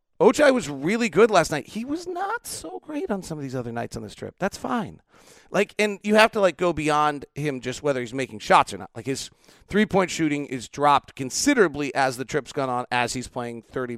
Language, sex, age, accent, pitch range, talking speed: English, male, 40-59, American, 125-170 Hz, 230 wpm